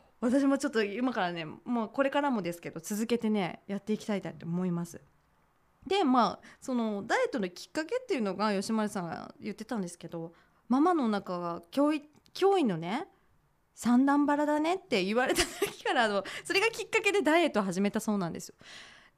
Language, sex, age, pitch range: Japanese, female, 20-39, 195-290 Hz